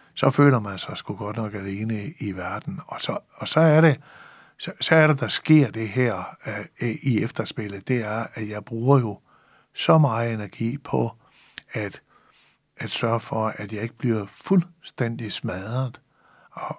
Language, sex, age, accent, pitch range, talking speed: Danish, male, 60-79, native, 105-135 Hz, 170 wpm